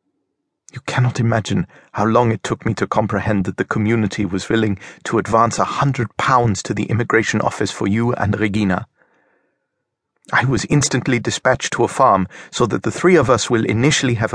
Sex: male